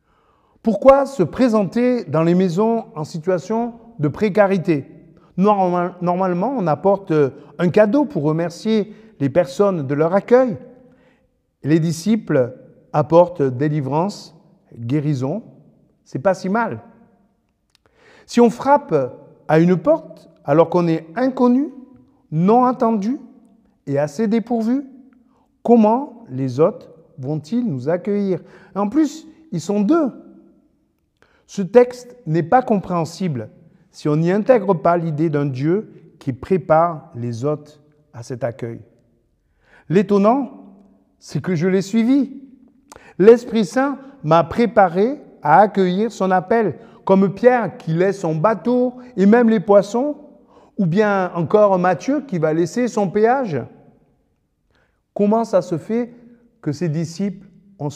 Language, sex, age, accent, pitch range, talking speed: French, male, 50-69, French, 160-235 Hz, 120 wpm